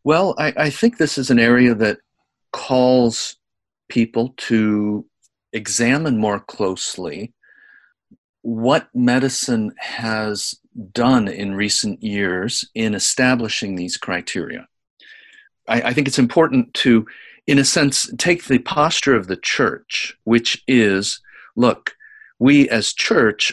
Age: 50-69